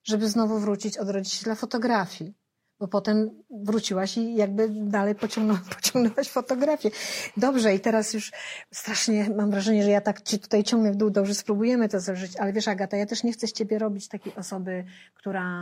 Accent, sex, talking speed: native, female, 180 wpm